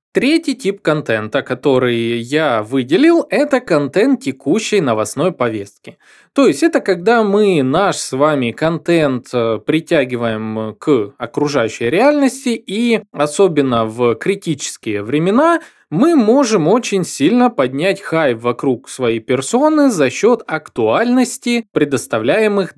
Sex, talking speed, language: male, 110 wpm, Russian